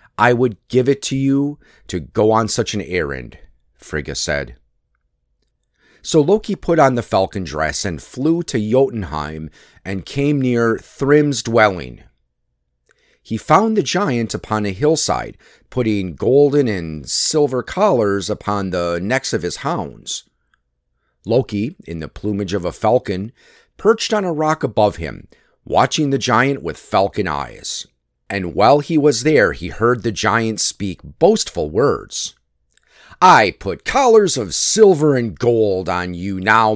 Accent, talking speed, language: American, 145 wpm, English